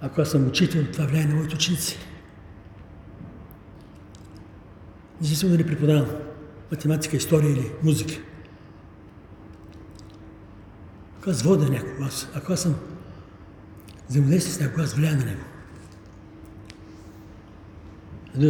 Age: 60-79